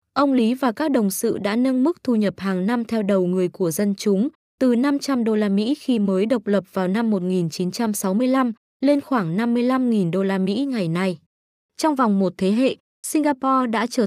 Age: 20-39